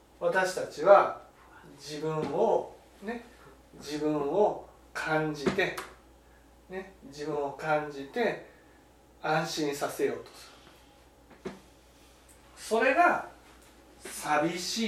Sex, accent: male, native